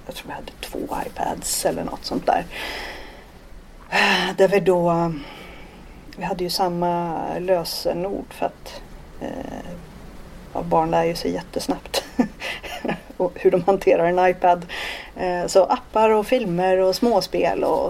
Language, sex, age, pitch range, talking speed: Swedish, female, 30-49, 175-220 Hz, 135 wpm